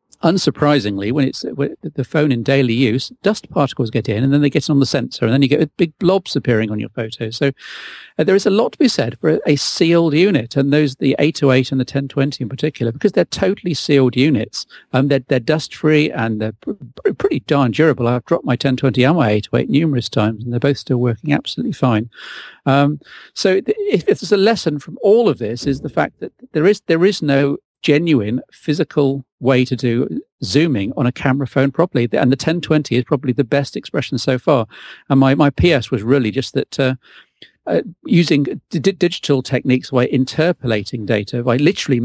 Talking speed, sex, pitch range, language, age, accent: 210 wpm, male, 125-155 Hz, English, 50-69, British